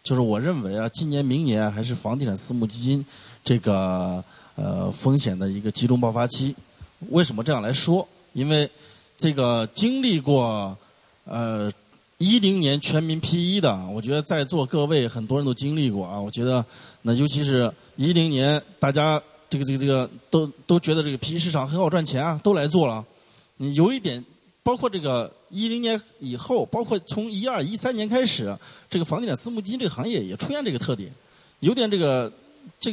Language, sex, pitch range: Chinese, male, 130-200 Hz